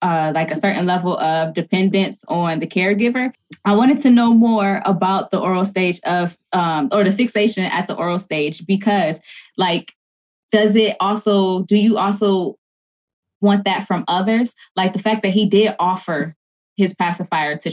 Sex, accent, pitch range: female, American, 165-200 Hz